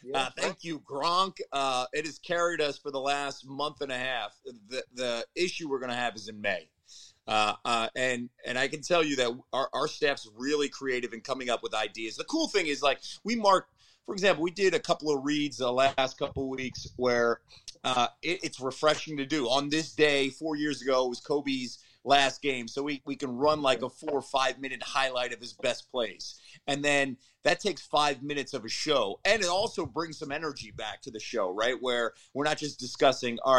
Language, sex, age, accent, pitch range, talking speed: English, male, 30-49, American, 130-160 Hz, 220 wpm